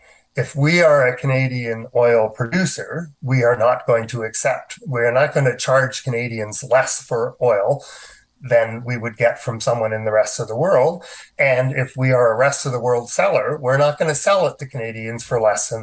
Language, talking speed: English, 210 wpm